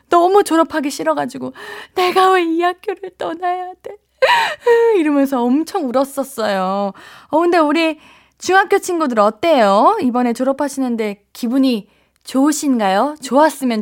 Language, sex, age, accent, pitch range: Korean, female, 20-39, native, 215-325 Hz